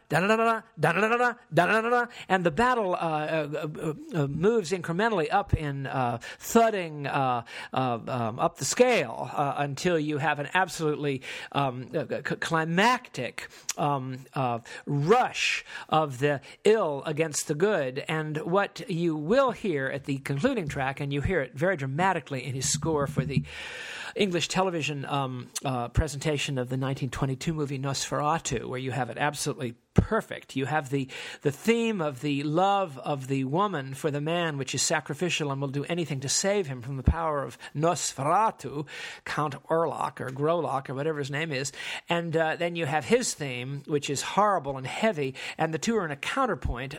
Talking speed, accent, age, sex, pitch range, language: 165 wpm, American, 50-69, male, 140-185 Hz, English